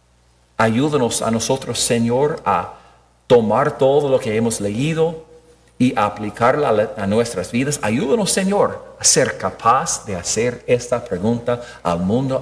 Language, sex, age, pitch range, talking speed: English, male, 50-69, 90-130 Hz, 130 wpm